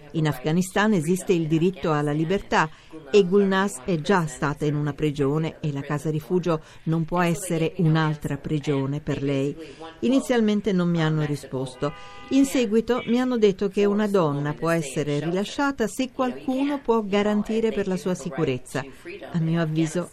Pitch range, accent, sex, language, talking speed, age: 150-195 Hz, native, female, Italian, 160 wpm, 50-69